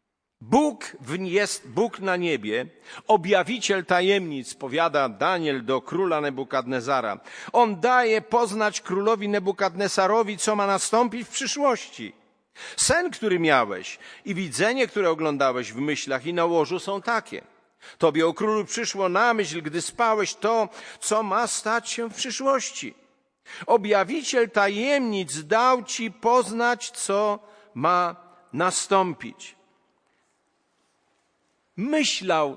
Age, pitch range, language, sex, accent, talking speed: 50-69, 175-235 Hz, Polish, male, native, 110 wpm